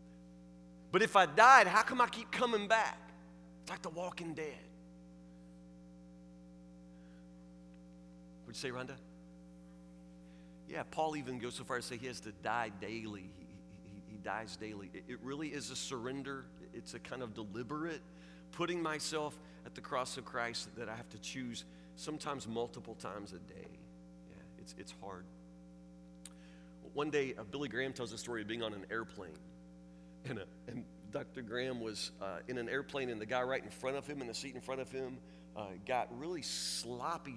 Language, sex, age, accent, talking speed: English, male, 40-59, American, 175 wpm